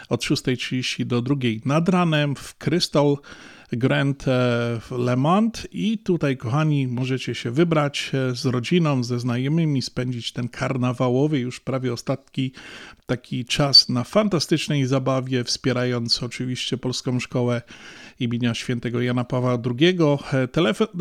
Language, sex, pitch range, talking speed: Polish, male, 125-155 Hz, 125 wpm